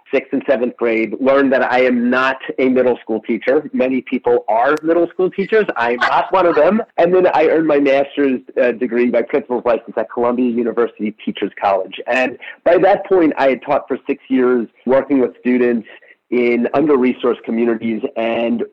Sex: male